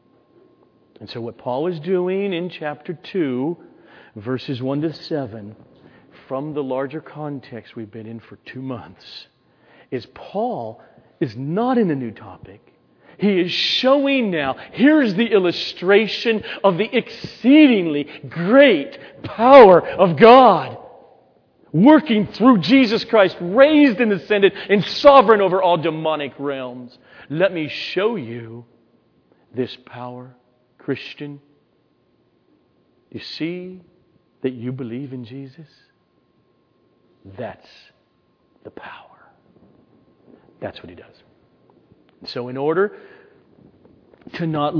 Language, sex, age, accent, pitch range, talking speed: English, male, 40-59, American, 130-195 Hz, 110 wpm